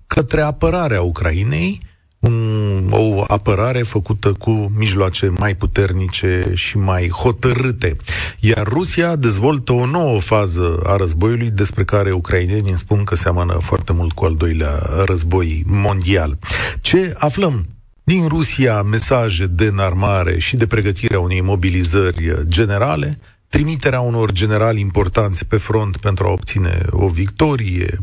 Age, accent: 40-59, native